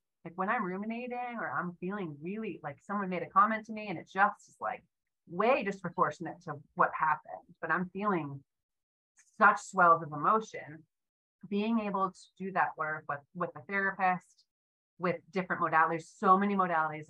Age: 30-49